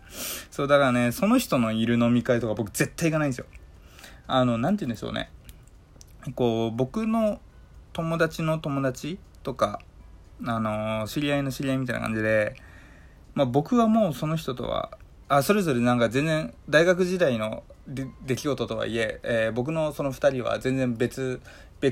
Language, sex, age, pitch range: Japanese, male, 20-39, 110-155 Hz